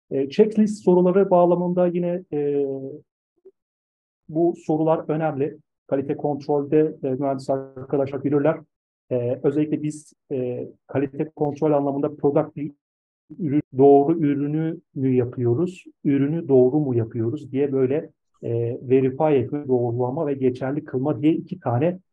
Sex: male